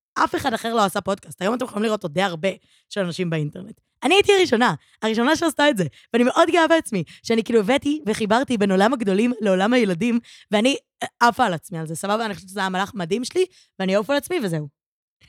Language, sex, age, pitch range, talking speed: Hebrew, female, 20-39, 180-230 Hz, 210 wpm